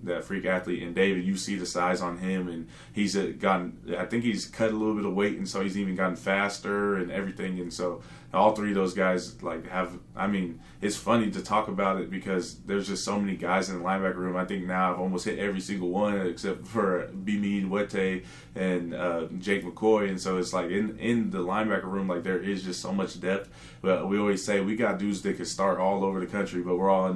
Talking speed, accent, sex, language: 240 wpm, American, male, English